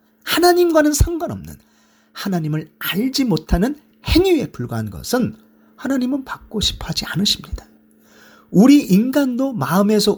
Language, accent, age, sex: Korean, native, 40-59, male